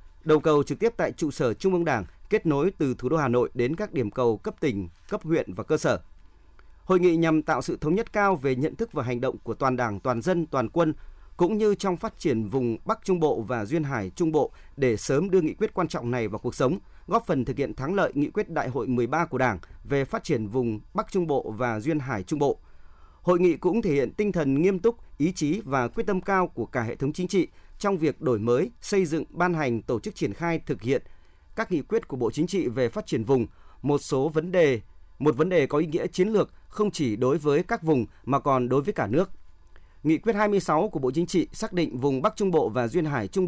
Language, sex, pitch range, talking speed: Vietnamese, male, 125-180 Hz, 255 wpm